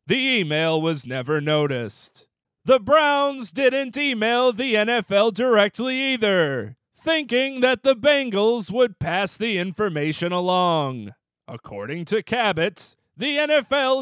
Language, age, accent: English, 40-59, American